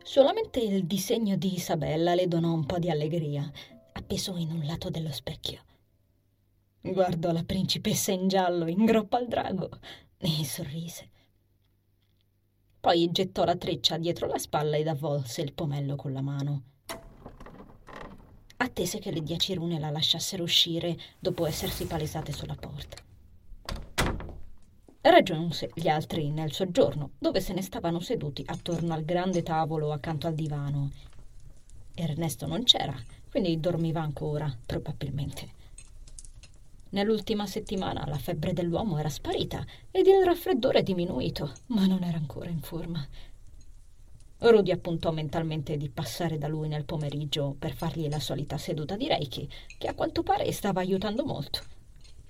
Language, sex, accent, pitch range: Italian, female, native, 140-180 Hz